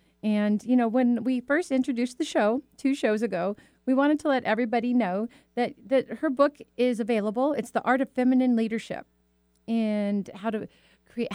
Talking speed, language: 180 wpm, English